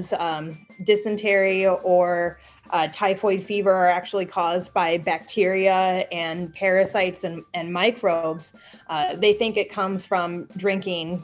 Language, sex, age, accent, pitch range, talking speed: English, female, 20-39, American, 175-195 Hz, 125 wpm